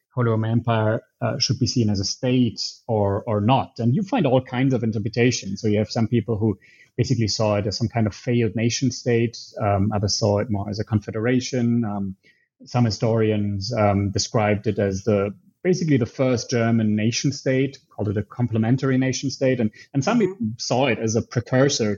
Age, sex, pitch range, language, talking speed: 30-49, male, 110-130 Hz, English, 190 wpm